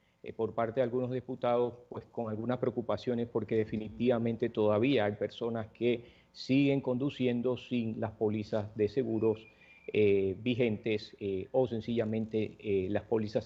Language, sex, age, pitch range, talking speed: Spanish, male, 40-59, 110-130 Hz, 135 wpm